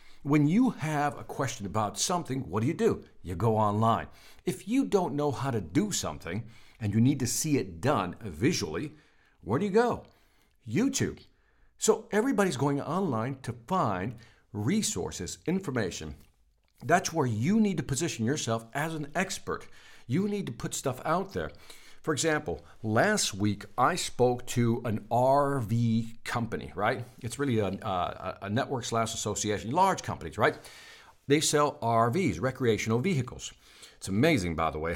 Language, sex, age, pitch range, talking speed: English, male, 50-69, 110-155 Hz, 155 wpm